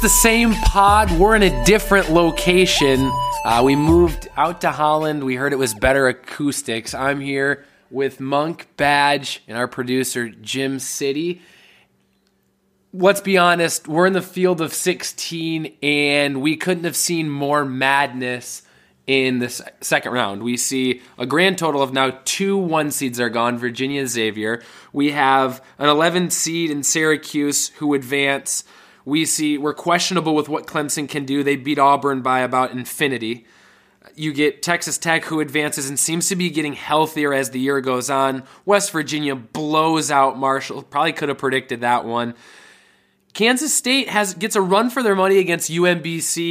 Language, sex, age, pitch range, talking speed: English, male, 20-39, 135-170 Hz, 165 wpm